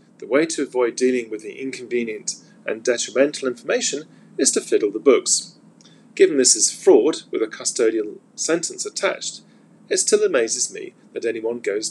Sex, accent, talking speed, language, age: male, British, 160 wpm, English, 40-59